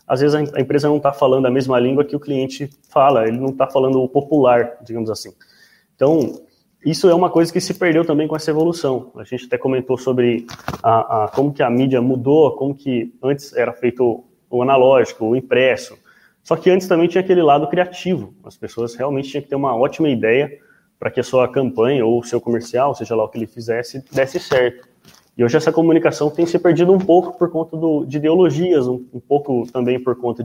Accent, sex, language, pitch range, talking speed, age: Brazilian, male, Portuguese, 125-160 Hz, 215 wpm, 20-39